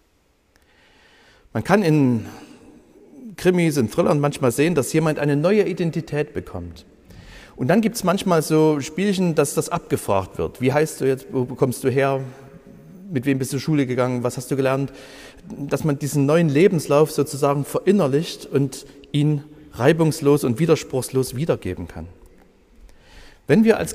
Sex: male